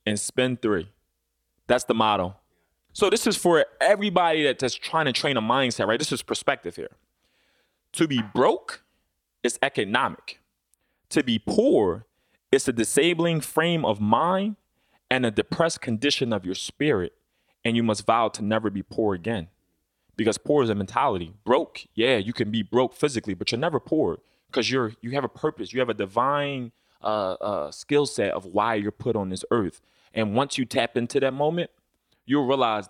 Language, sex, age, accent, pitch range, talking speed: English, male, 20-39, American, 105-135 Hz, 180 wpm